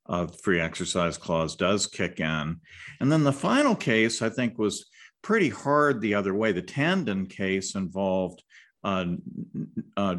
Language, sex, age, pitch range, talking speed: English, male, 50-69, 90-115 Hz, 160 wpm